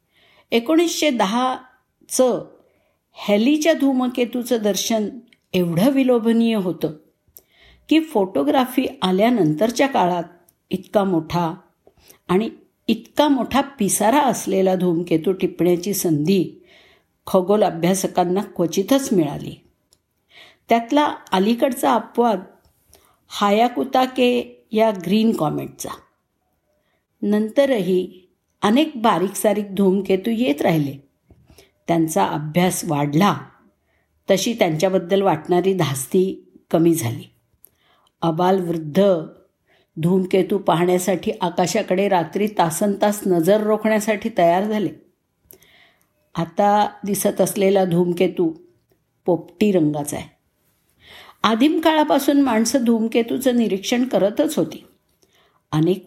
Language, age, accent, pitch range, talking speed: Marathi, 50-69, native, 180-235 Hz, 80 wpm